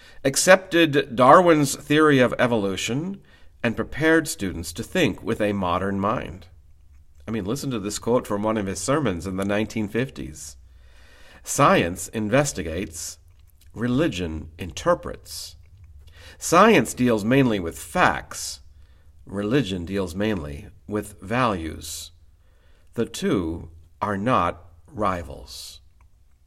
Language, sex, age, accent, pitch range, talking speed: English, male, 50-69, American, 80-125 Hz, 105 wpm